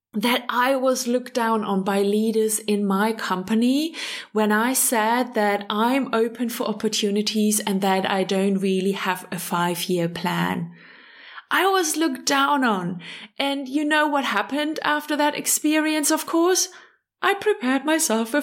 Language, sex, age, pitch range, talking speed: English, female, 20-39, 205-270 Hz, 155 wpm